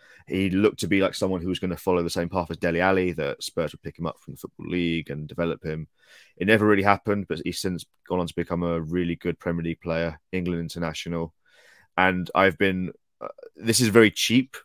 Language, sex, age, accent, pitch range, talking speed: English, male, 20-39, British, 85-95 Hz, 235 wpm